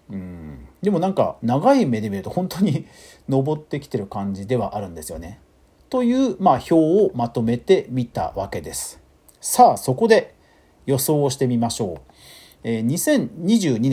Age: 50-69